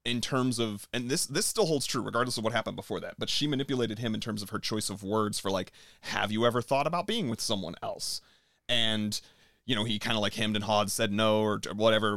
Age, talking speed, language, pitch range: 30-49, 250 wpm, English, 105-130 Hz